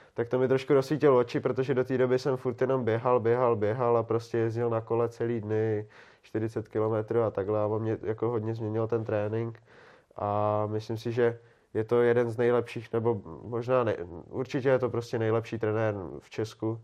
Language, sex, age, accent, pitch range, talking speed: Czech, male, 20-39, native, 110-120 Hz, 195 wpm